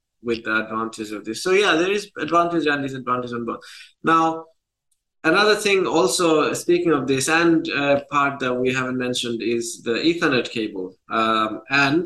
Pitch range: 120-150 Hz